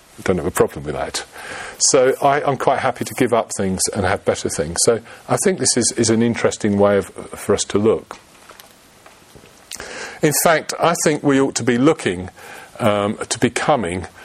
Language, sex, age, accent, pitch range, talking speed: English, male, 40-59, British, 100-140 Hz, 190 wpm